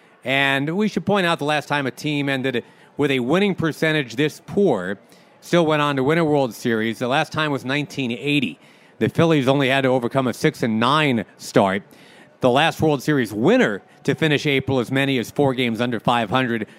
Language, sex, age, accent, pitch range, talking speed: English, male, 40-59, American, 125-165 Hz, 205 wpm